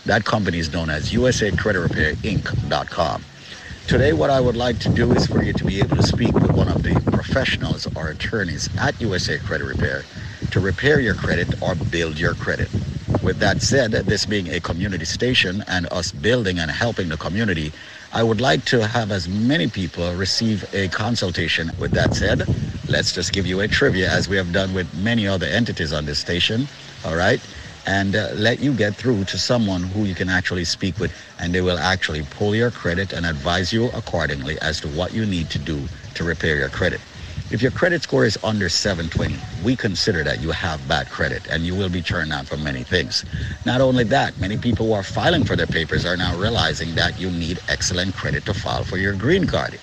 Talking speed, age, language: 210 wpm, 60-79, English